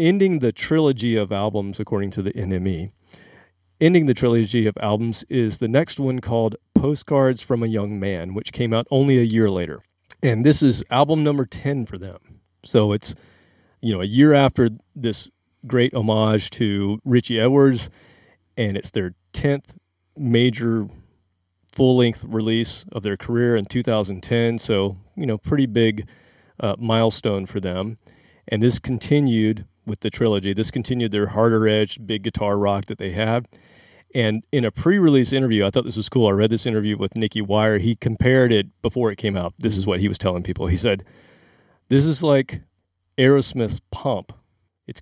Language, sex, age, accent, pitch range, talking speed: English, male, 40-59, American, 100-125 Hz, 170 wpm